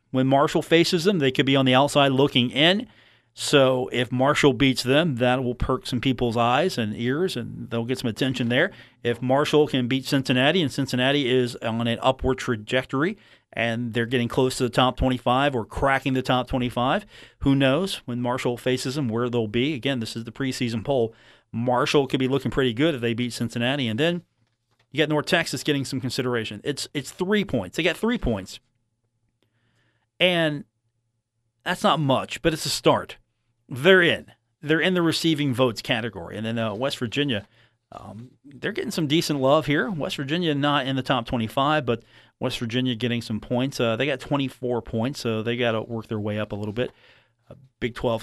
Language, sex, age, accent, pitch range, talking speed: English, male, 40-59, American, 115-140 Hz, 200 wpm